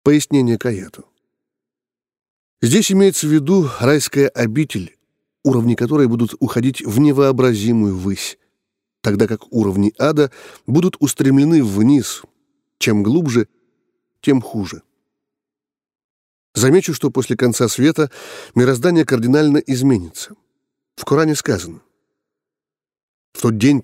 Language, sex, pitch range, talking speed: Russian, male, 110-145 Hz, 105 wpm